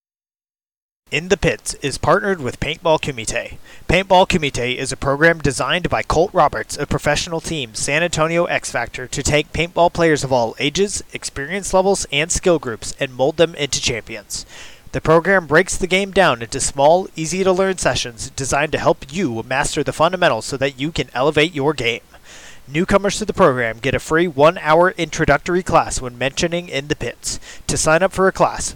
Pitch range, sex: 135-175 Hz, male